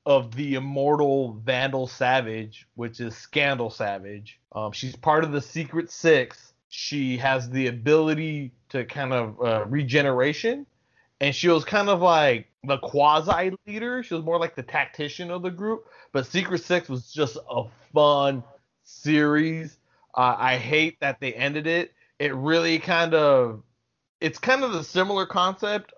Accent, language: American, English